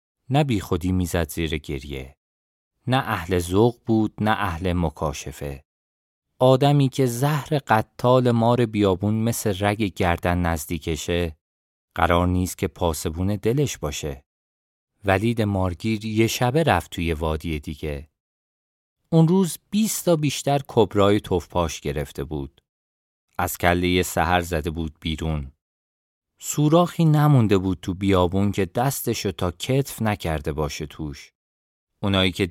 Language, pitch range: Persian, 80-115 Hz